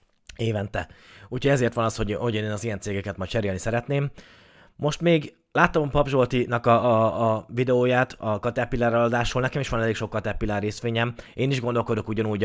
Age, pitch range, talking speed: 20-39, 100-120 Hz, 175 wpm